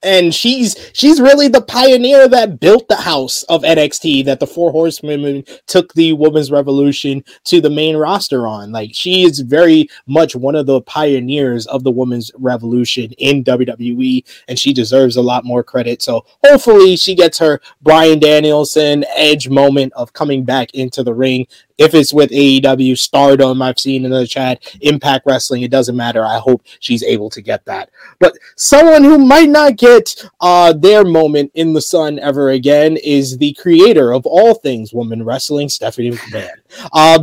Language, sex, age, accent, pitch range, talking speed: English, male, 20-39, American, 130-165 Hz, 175 wpm